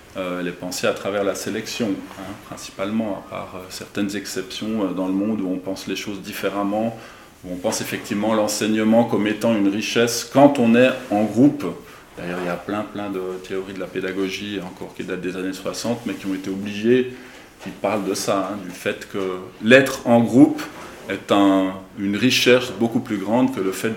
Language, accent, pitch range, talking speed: French, French, 95-120 Hz, 205 wpm